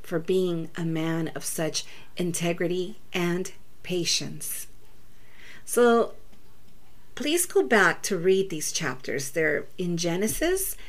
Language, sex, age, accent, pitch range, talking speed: English, female, 40-59, American, 165-215 Hz, 110 wpm